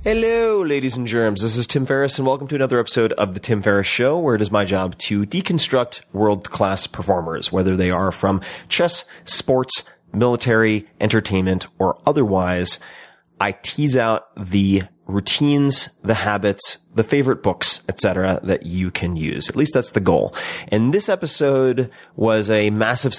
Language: English